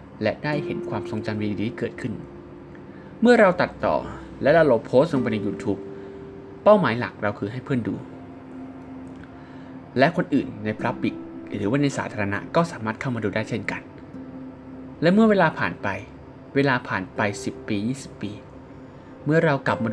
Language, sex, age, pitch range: Thai, male, 20-39, 95-130 Hz